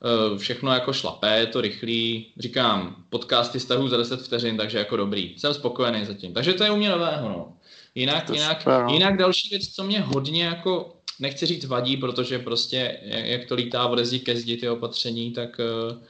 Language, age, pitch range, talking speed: Czech, 20-39, 115-135 Hz, 175 wpm